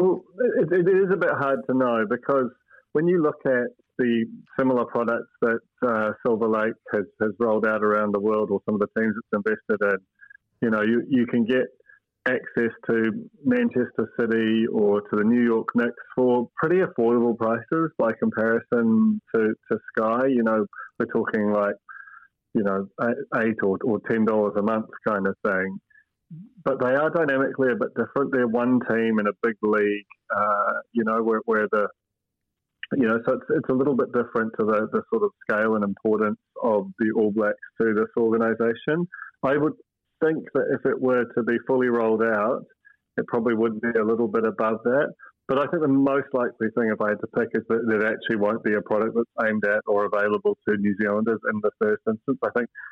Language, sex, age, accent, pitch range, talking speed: English, male, 30-49, British, 110-135 Hz, 200 wpm